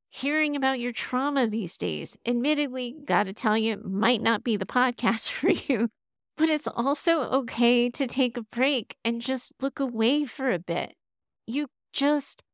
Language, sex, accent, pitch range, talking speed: English, female, American, 215-260 Hz, 165 wpm